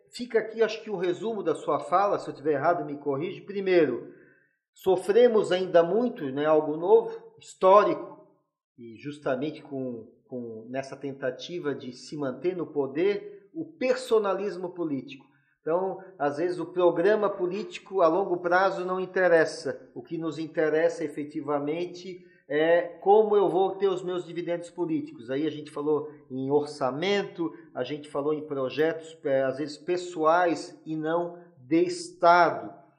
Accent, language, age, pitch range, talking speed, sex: Brazilian, Portuguese, 40-59, 145-190 Hz, 150 wpm, male